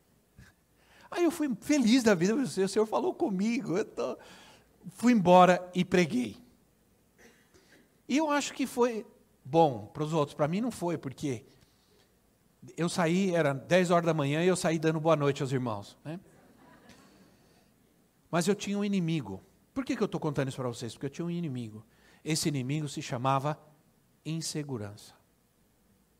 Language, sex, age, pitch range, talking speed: Portuguese, male, 60-79, 130-190 Hz, 155 wpm